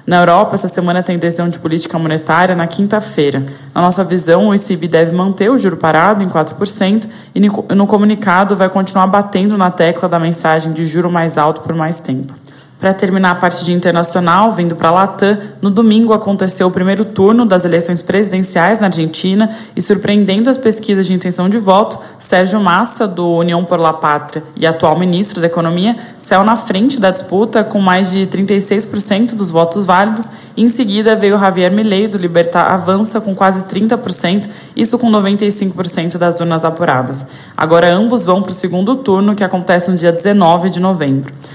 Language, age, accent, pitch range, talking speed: Portuguese, 20-39, Brazilian, 170-205 Hz, 175 wpm